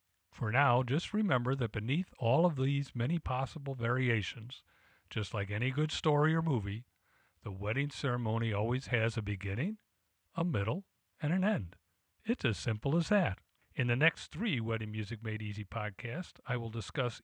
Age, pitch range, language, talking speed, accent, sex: 50-69, 105-140 Hz, English, 165 wpm, American, male